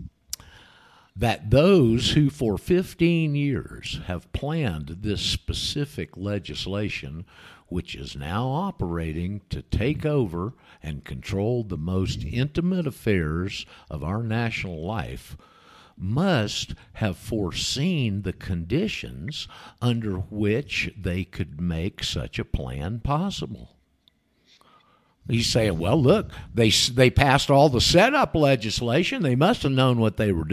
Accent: American